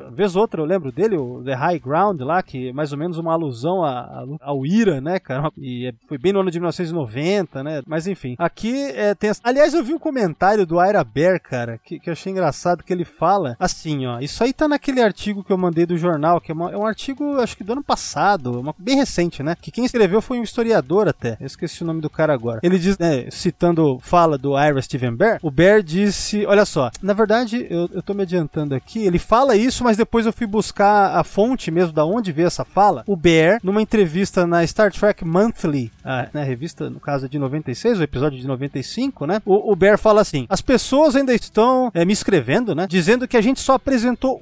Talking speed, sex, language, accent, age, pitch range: 235 wpm, male, Portuguese, Brazilian, 20-39, 155-220 Hz